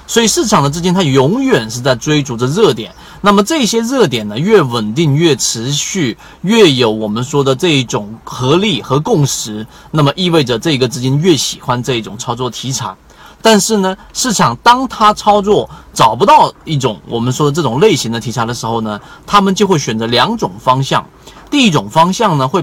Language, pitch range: Chinese, 120-190 Hz